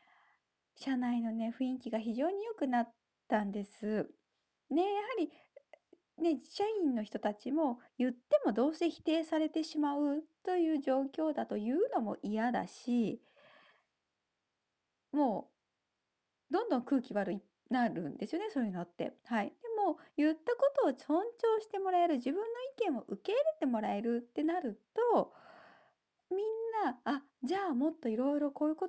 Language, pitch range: Japanese, 230-345 Hz